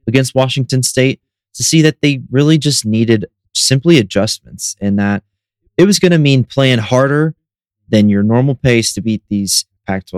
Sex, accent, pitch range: male, American, 100-115 Hz